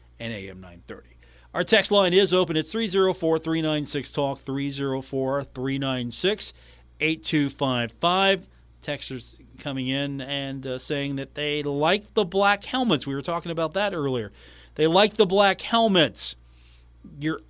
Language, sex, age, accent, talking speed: English, male, 40-59, American, 120 wpm